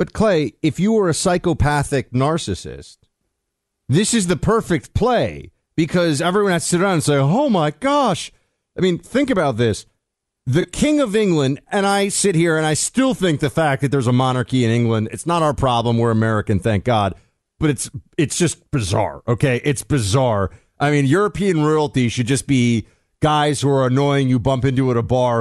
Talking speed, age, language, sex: 195 wpm, 40-59, English, male